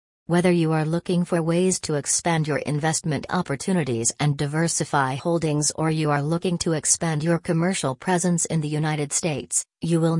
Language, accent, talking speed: English, American, 170 wpm